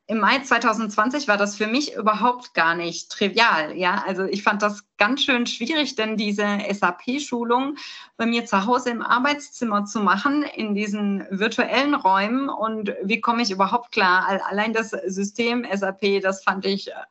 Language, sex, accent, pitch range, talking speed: German, female, German, 200-235 Hz, 170 wpm